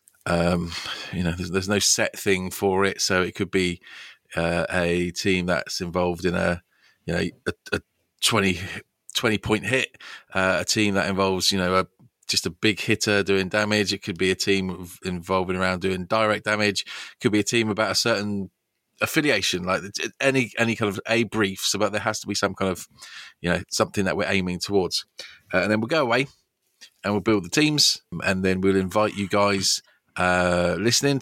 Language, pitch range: English, 90-110 Hz